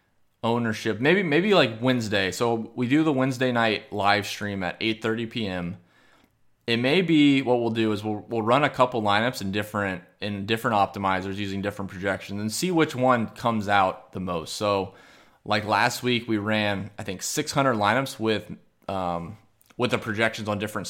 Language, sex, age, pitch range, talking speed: English, male, 20-39, 100-125 Hz, 180 wpm